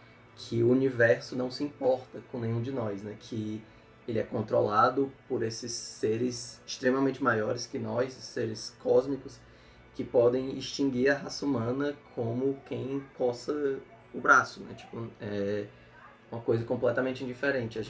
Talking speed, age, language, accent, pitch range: 140 wpm, 20-39, Portuguese, Brazilian, 115-135 Hz